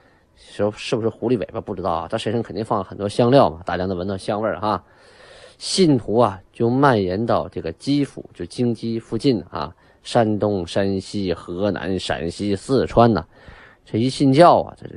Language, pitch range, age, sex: Chinese, 100-145 Hz, 20-39, male